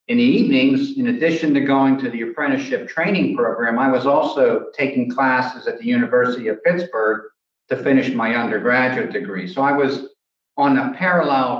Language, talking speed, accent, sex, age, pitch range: English, 170 wpm, American, male, 50-69, 125-160 Hz